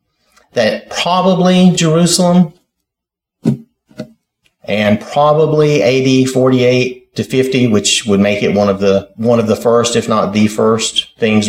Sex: male